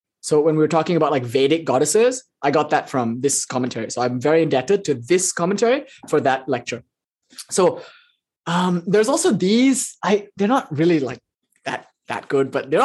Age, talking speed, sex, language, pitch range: 20-39, 185 wpm, male, English, 150-200 Hz